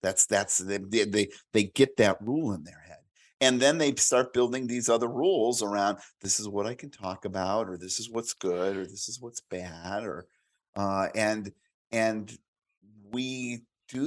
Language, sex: English, male